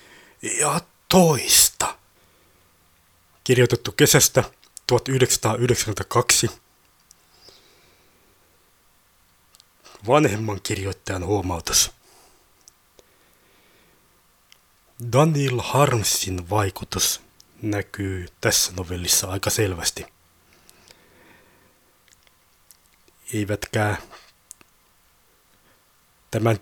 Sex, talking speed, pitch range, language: male, 40 wpm, 95-140 Hz, Finnish